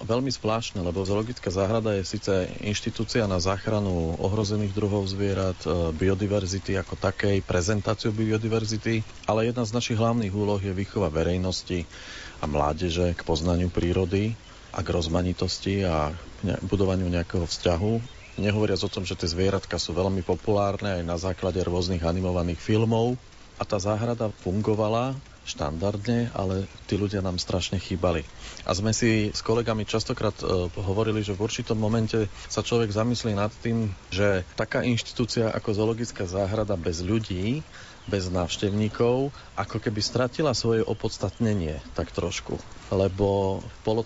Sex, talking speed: male, 140 wpm